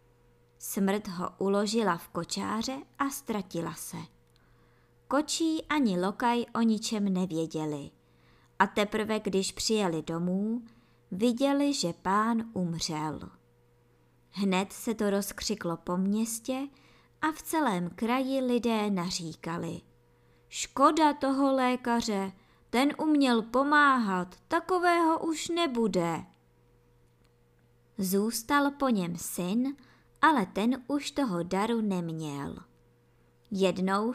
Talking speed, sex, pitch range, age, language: 95 wpm, male, 170-270 Hz, 20-39, Czech